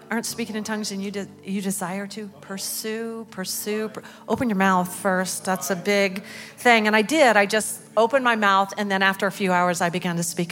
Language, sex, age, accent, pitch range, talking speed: English, female, 40-59, American, 185-230 Hz, 210 wpm